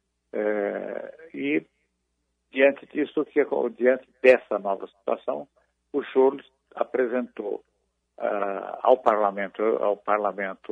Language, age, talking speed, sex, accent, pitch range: Portuguese, 60-79, 95 wpm, male, Brazilian, 95-125 Hz